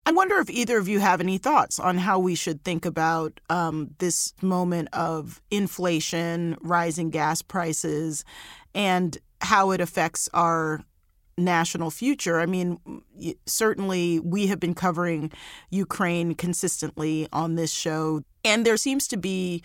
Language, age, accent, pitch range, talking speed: English, 40-59, American, 165-190 Hz, 145 wpm